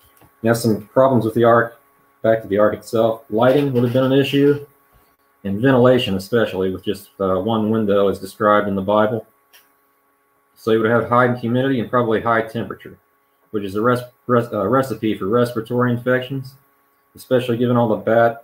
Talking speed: 180 wpm